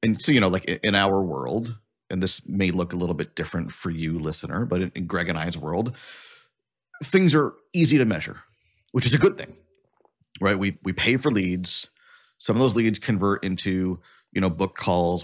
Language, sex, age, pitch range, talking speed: English, male, 30-49, 90-125 Hz, 205 wpm